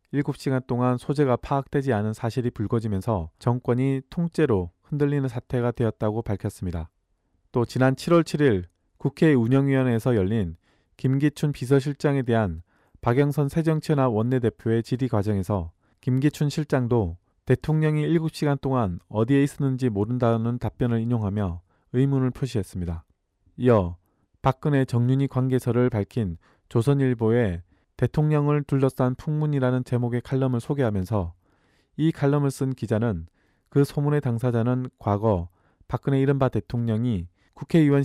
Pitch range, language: 105-140 Hz, Korean